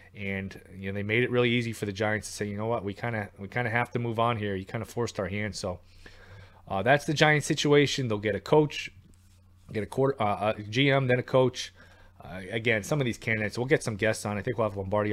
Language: English